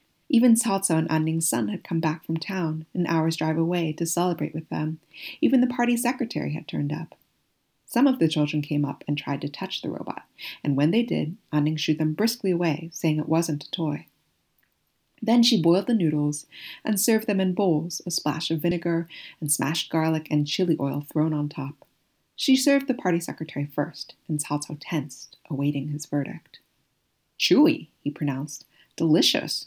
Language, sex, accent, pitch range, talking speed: English, female, American, 150-185 Hz, 185 wpm